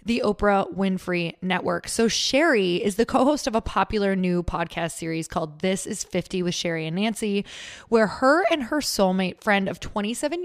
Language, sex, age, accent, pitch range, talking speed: English, female, 20-39, American, 170-210 Hz, 180 wpm